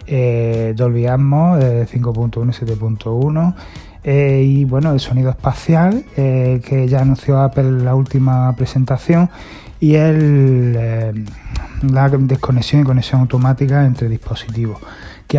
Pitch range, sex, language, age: 120-135 Hz, male, Spanish, 30-49